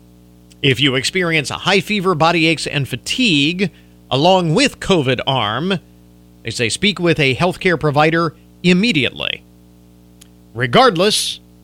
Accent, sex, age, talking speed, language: American, male, 50-69, 120 wpm, English